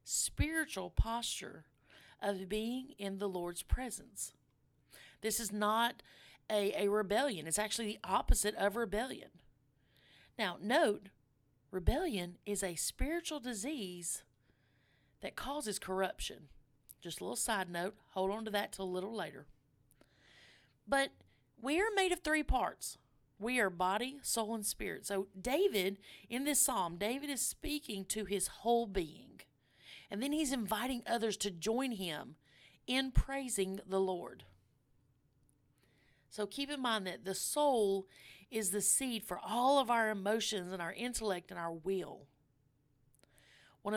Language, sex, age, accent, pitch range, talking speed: English, female, 40-59, American, 155-230 Hz, 140 wpm